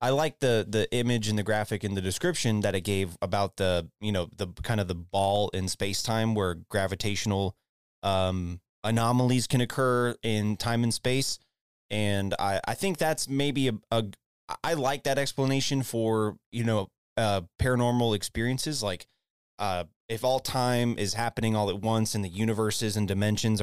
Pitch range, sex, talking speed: 100-120 Hz, male, 175 wpm